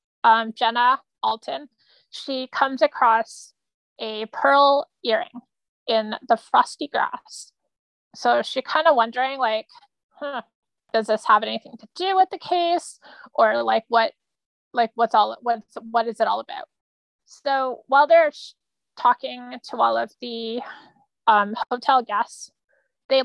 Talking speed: 135 wpm